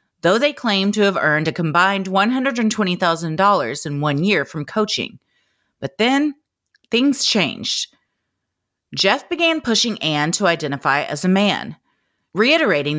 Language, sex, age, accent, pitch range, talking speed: English, female, 30-49, American, 165-235 Hz, 130 wpm